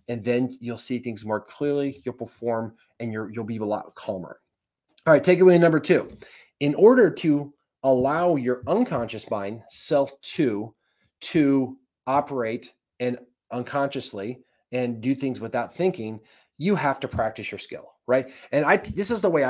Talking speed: 165 wpm